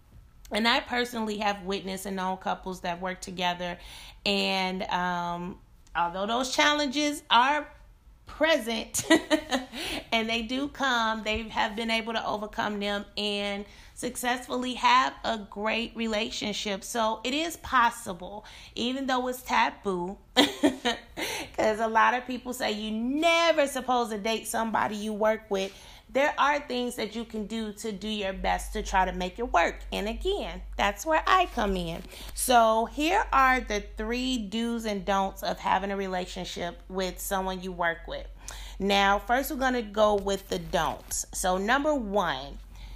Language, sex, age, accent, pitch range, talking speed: English, female, 30-49, American, 195-255 Hz, 155 wpm